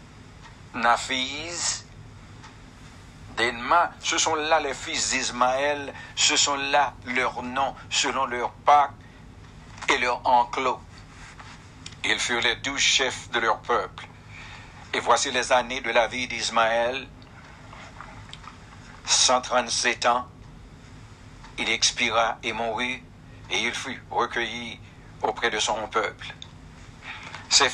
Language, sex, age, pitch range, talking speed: English, male, 60-79, 115-130 Hz, 110 wpm